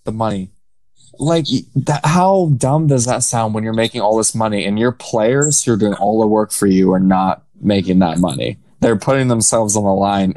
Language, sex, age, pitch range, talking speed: English, male, 20-39, 105-145 Hz, 215 wpm